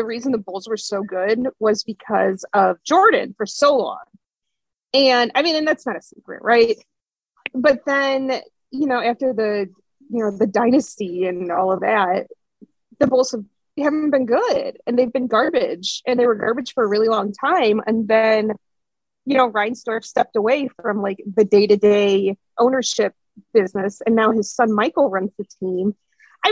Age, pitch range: 30-49, 210-270 Hz